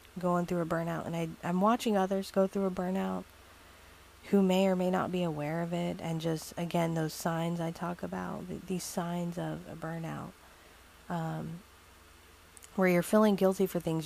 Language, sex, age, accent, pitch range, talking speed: English, female, 30-49, American, 155-185 Hz, 175 wpm